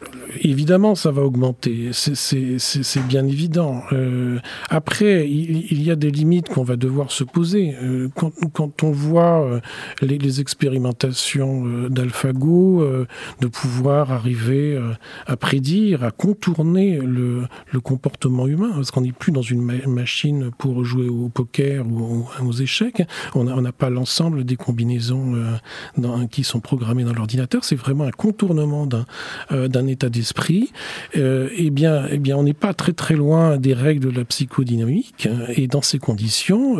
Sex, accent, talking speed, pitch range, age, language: male, French, 170 wpm, 125-160 Hz, 50-69, French